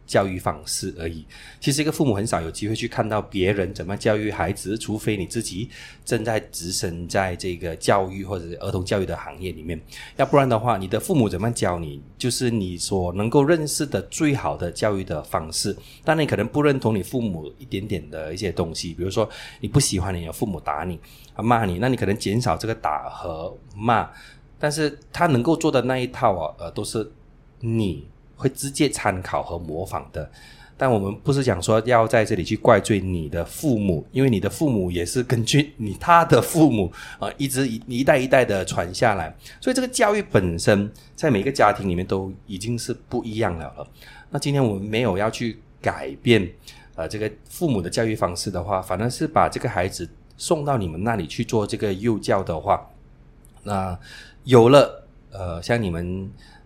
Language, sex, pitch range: English, male, 95-125 Hz